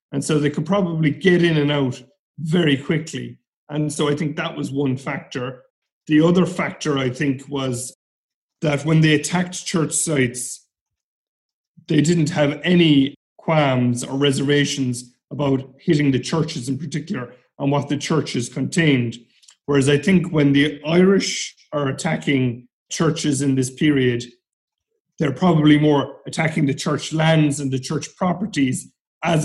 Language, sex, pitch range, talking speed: English, male, 130-160 Hz, 150 wpm